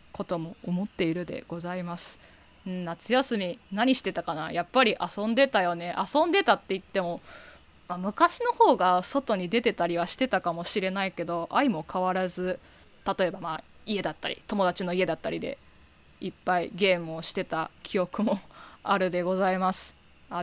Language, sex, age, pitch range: Japanese, female, 20-39, 175-205 Hz